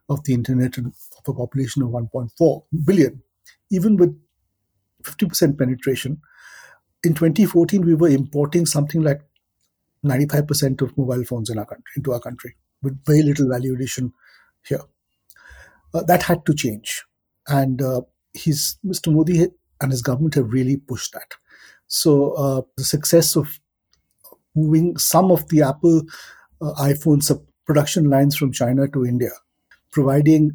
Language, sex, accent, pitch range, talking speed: English, male, Indian, 125-155 Hz, 155 wpm